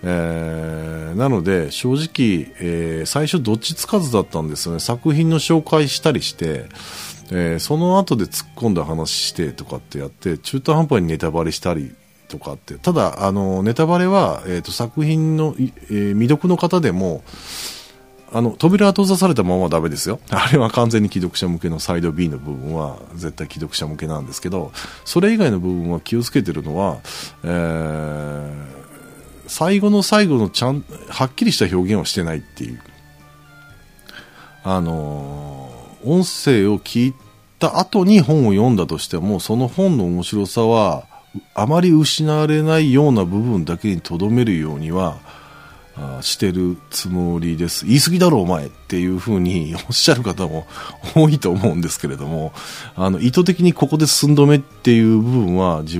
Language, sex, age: Japanese, male, 40-59